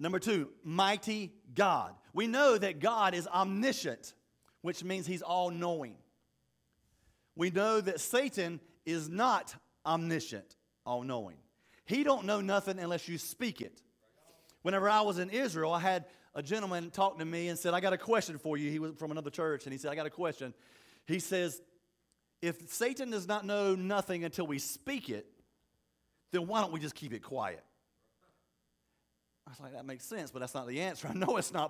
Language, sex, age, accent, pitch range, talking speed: English, male, 40-59, American, 150-190 Hz, 185 wpm